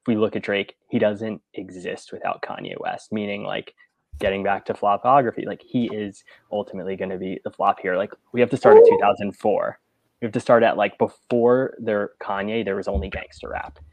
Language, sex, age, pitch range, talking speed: English, male, 20-39, 95-105 Hz, 200 wpm